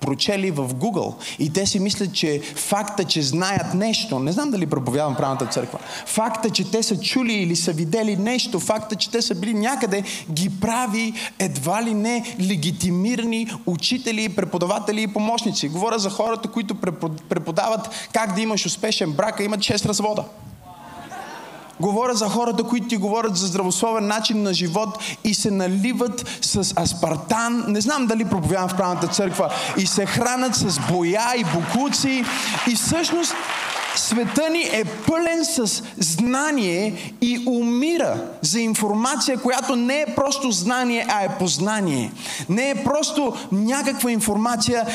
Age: 20-39